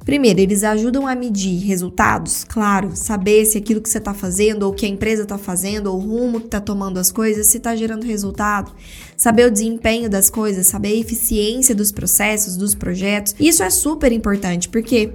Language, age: Portuguese, 10-29